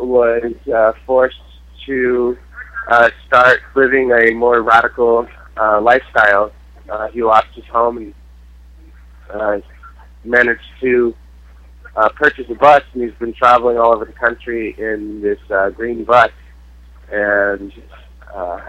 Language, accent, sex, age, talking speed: English, American, male, 20-39, 130 wpm